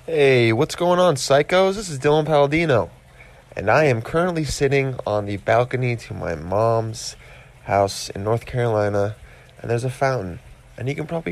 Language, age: English, 20-39